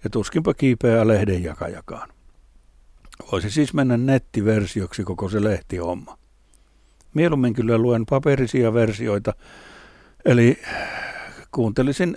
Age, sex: 60-79, male